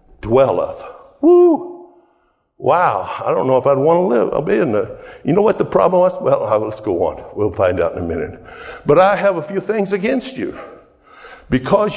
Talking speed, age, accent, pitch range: 200 wpm, 60-79, American, 135-190 Hz